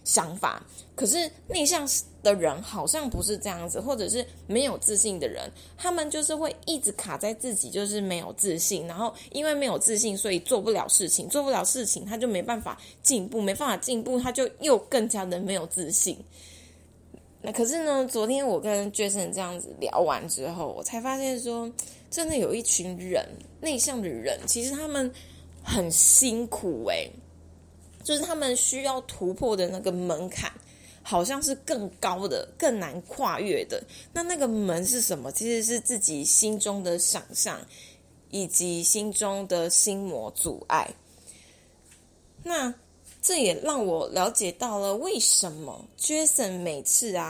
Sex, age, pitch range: female, 20-39, 175-255 Hz